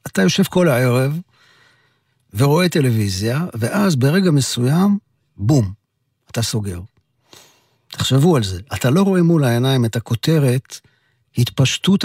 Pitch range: 115-170 Hz